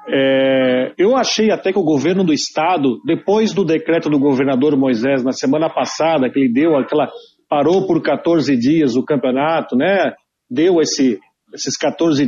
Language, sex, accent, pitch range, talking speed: Portuguese, male, Brazilian, 150-240 Hz, 160 wpm